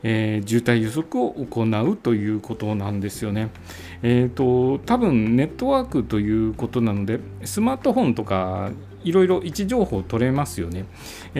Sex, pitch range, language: male, 105-155 Hz, Japanese